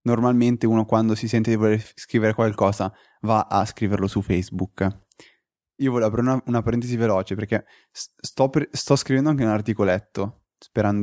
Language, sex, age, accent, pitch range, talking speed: Italian, male, 20-39, native, 95-120 Hz, 170 wpm